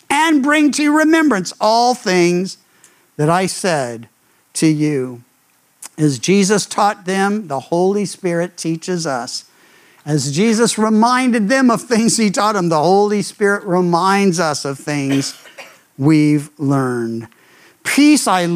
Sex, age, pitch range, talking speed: male, 50-69, 170-255 Hz, 130 wpm